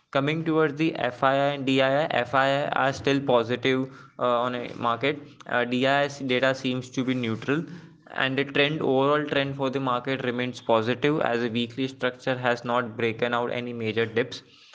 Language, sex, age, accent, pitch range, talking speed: English, male, 20-39, Indian, 120-140 Hz, 170 wpm